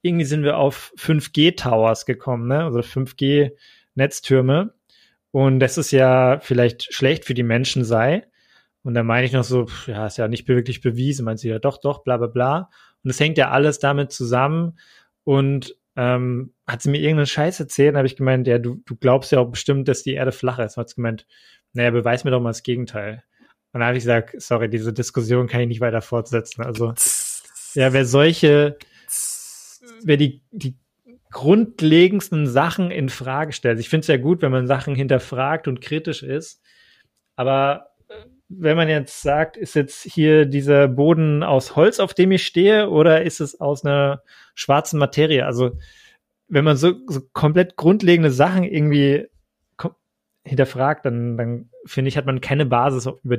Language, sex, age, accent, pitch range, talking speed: German, male, 20-39, German, 125-150 Hz, 180 wpm